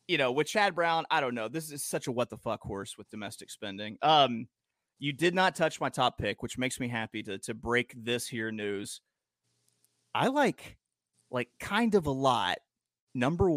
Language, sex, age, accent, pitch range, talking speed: English, male, 30-49, American, 115-145 Hz, 200 wpm